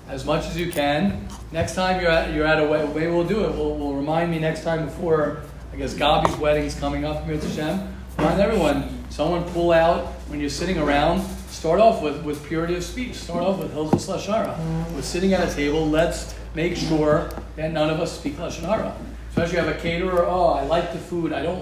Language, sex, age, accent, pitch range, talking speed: English, male, 40-59, American, 145-170 Hz, 225 wpm